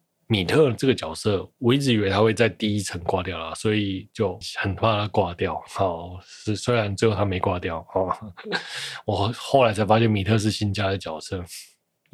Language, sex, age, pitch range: Chinese, male, 20-39, 95-120 Hz